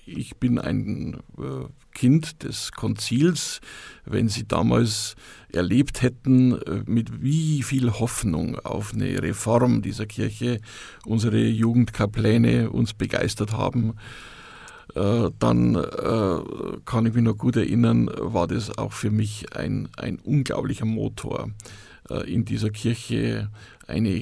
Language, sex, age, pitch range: German, male, 50-69, 110-130 Hz